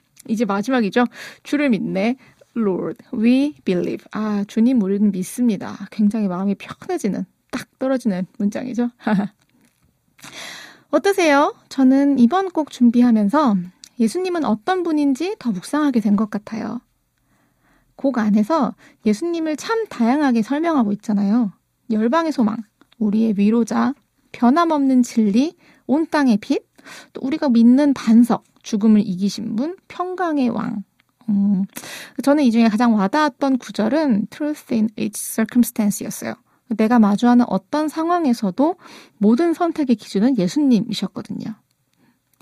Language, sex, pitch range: Korean, female, 215-290 Hz